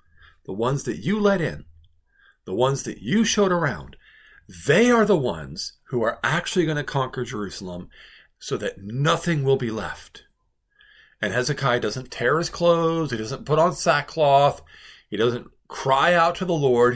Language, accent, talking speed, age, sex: English, American, 165 wpm, 50-69, male